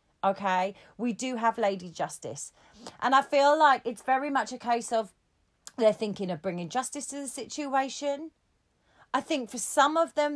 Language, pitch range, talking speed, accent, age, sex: English, 180-225 Hz, 175 wpm, British, 40-59, female